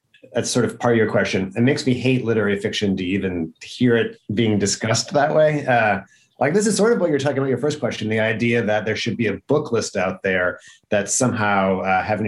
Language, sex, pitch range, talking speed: English, male, 100-125 Hz, 240 wpm